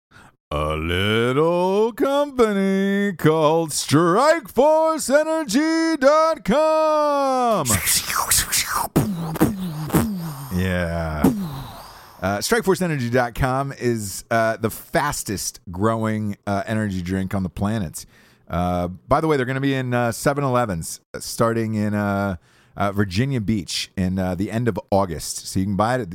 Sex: male